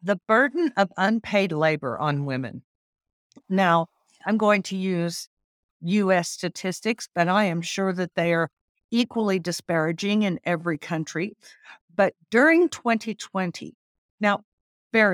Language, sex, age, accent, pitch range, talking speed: English, female, 60-79, American, 160-210 Hz, 125 wpm